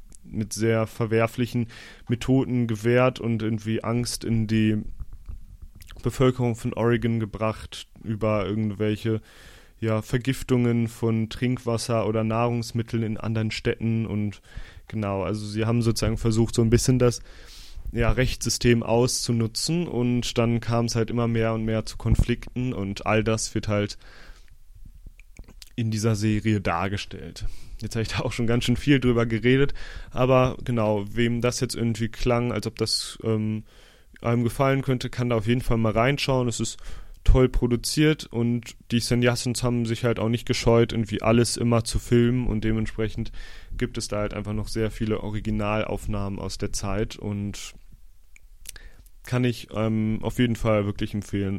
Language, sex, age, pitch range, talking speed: German, male, 30-49, 105-125 Hz, 155 wpm